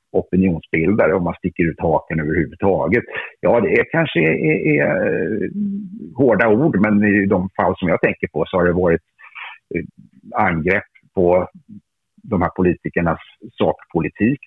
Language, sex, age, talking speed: Swedish, male, 50-69, 140 wpm